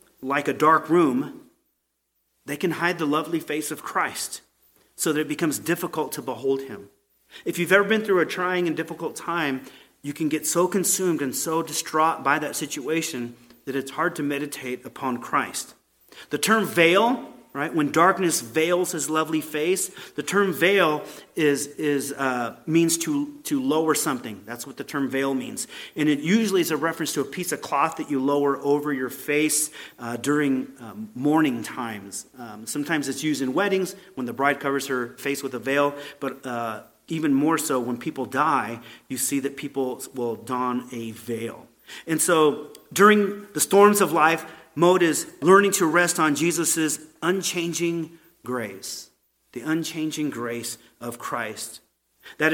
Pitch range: 135-170 Hz